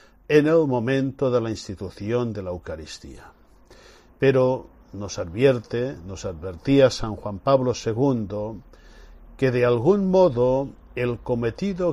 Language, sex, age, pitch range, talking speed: Spanish, male, 60-79, 105-150 Hz, 120 wpm